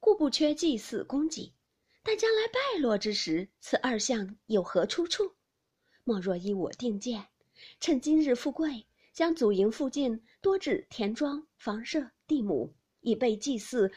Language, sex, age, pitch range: Chinese, female, 30-49, 215-320 Hz